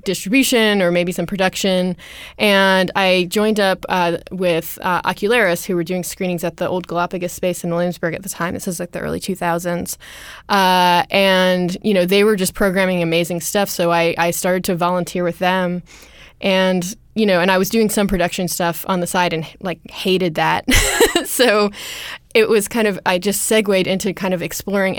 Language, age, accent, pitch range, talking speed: English, 20-39, American, 175-200 Hz, 190 wpm